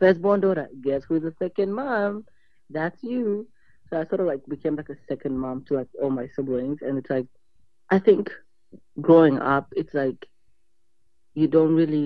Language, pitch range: English, 135-195 Hz